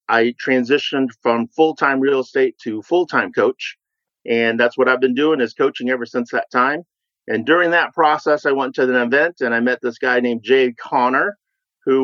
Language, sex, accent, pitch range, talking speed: English, male, American, 120-140 Hz, 205 wpm